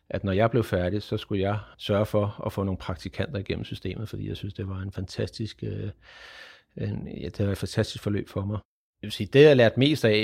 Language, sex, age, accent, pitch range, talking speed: Danish, male, 30-49, native, 100-110 Hz, 240 wpm